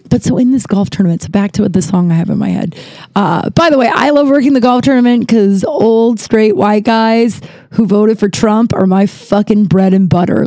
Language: English